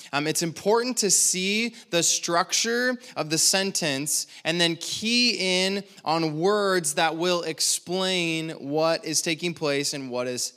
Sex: male